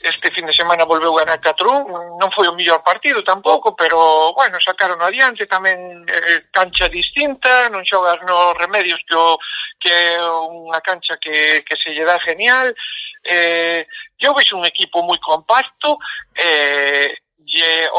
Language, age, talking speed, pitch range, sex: Spanish, 50-69, 145 wpm, 165-245 Hz, male